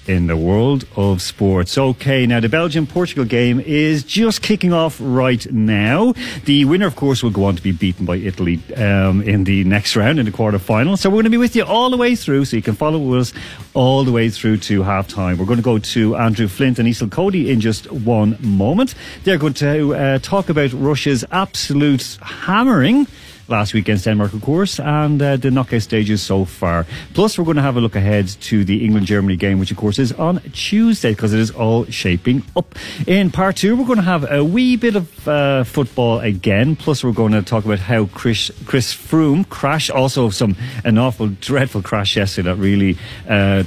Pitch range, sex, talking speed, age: 105-150 Hz, male, 210 wpm, 40-59